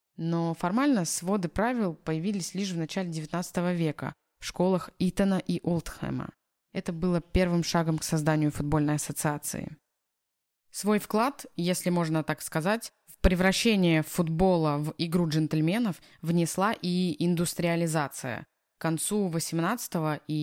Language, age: Russian, 20-39